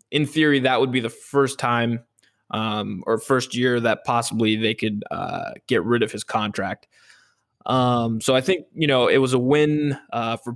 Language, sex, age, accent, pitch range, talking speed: English, male, 20-39, American, 120-135 Hz, 195 wpm